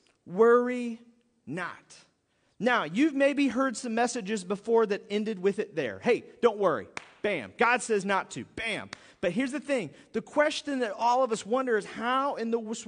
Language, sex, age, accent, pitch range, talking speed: English, male, 40-59, American, 190-250 Hz, 175 wpm